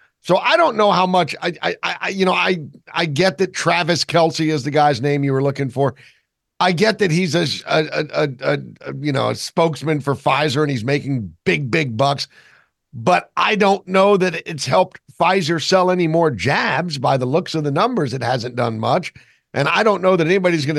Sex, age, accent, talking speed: male, 50-69, American, 215 wpm